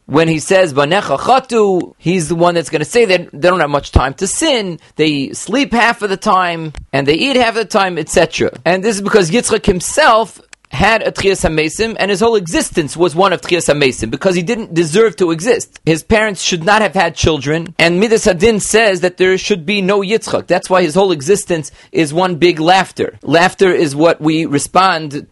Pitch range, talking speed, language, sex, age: 160-195 Hz, 210 wpm, English, male, 30-49